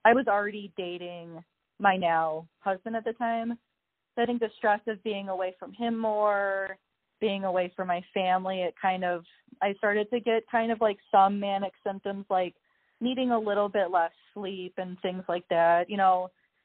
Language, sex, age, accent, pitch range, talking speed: English, female, 30-49, American, 175-210 Hz, 185 wpm